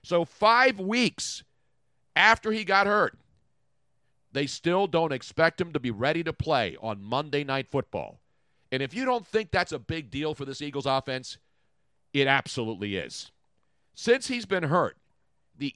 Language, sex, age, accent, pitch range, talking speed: English, male, 50-69, American, 135-190 Hz, 160 wpm